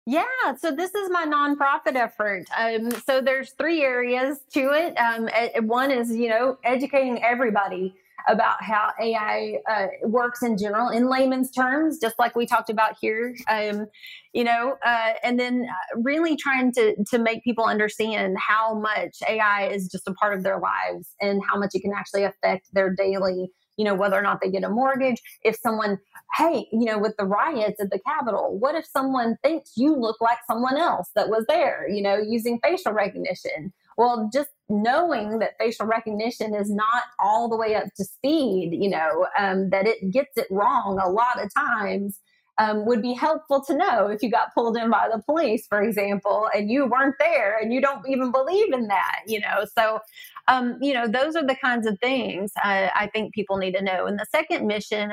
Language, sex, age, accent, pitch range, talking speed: English, female, 30-49, American, 205-255 Hz, 200 wpm